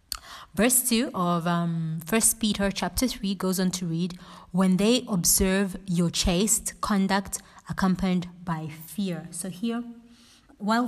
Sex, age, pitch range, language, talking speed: female, 20-39, 175-205 Hz, English, 130 wpm